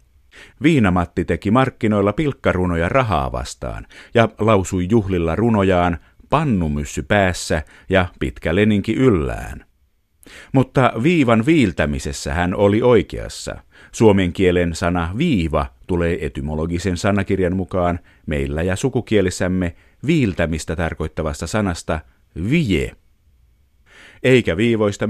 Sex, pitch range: male, 85-115 Hz